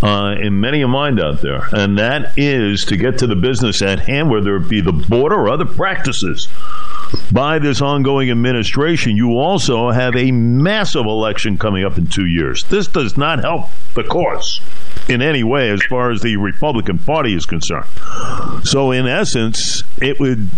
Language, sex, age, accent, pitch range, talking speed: English, male, 50-69, American, 110-165 Hz, 180 wpm